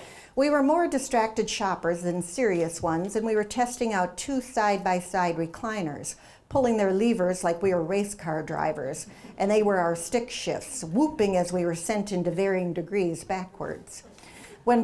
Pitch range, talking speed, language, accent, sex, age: 175-225 Hz, 165 wpm, English, American, female, 50-69